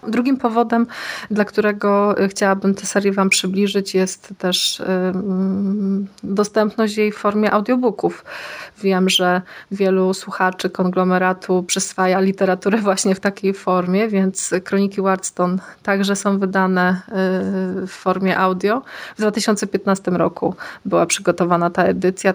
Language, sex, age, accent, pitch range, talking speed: Polish, female, 20-39, native, 185-210 Hz, 115 wpm